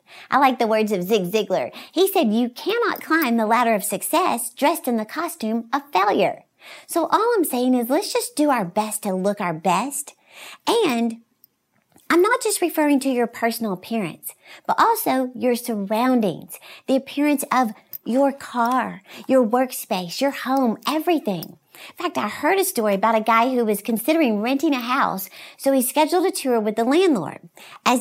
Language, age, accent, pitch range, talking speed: English, 50-69, American, 230-315 Hz, 180 wpm